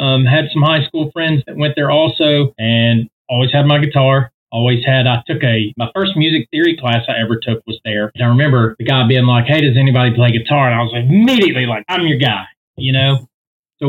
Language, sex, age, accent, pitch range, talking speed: English, male, 30-49, American, 120-150 Hz, 230 wpm